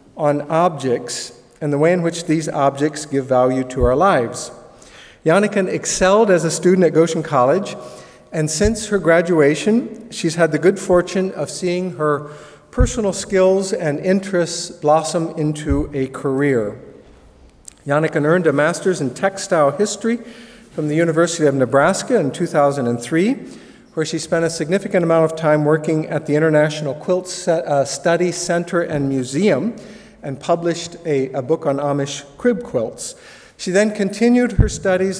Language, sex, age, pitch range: English, male, 50-69, 145-185 Hz